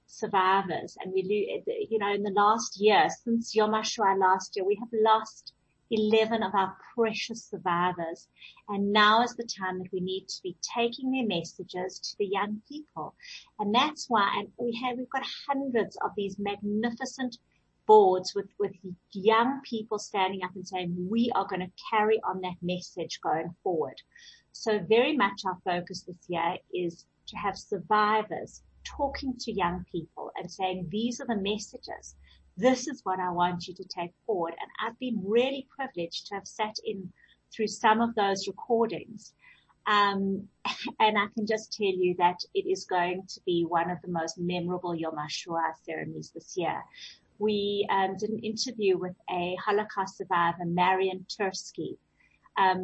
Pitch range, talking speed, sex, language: 180-225 Hz, 170 wpm, female, English